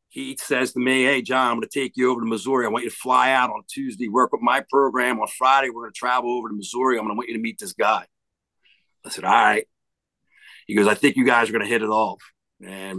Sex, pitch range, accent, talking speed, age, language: male, 110-135 Hz, American, 280 wpm, 50-69, English